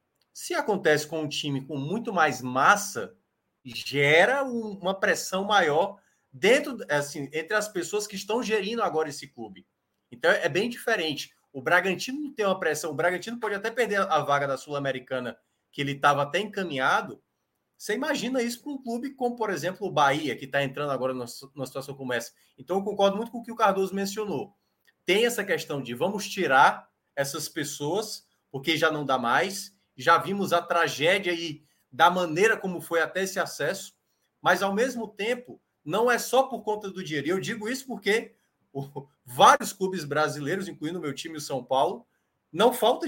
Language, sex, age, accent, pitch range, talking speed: Portuguese, male, 20-39, Brazilian, 145-215 Hz, 180 wpm